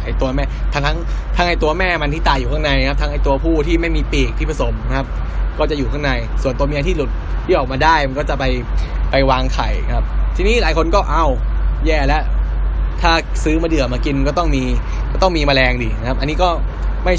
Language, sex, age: Thai, male, 10-29